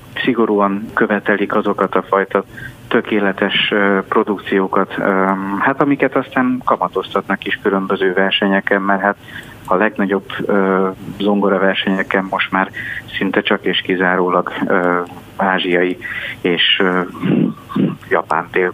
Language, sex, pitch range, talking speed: Hungarian, male, 95-110 Hz, 95 wpm